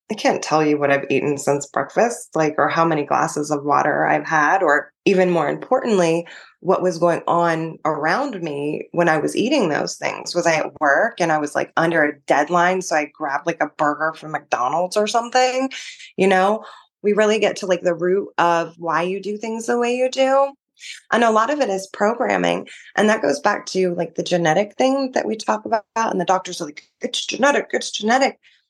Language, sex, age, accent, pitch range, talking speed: English, female, 20-39, American, 160-215 Hz, 215 wpm